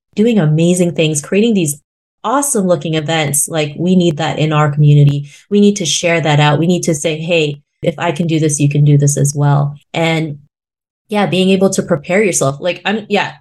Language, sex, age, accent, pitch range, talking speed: English, female, 20-39, American, 165-225 Hz, 210 wpm